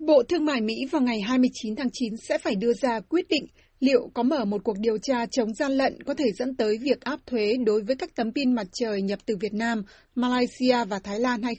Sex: female